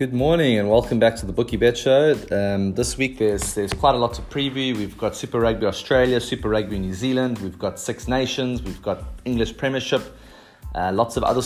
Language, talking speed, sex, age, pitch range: English, 215 wpm, male, 30-49, 100-125 Hz